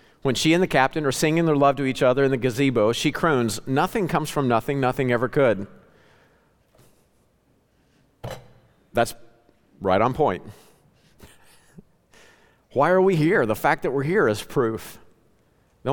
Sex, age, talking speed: male, 50-69, 150 wpm